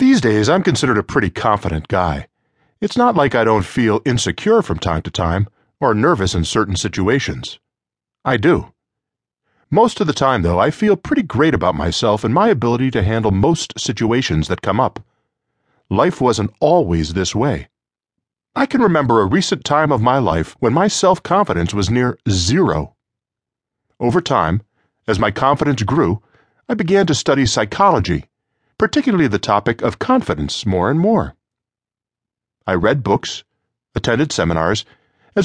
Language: English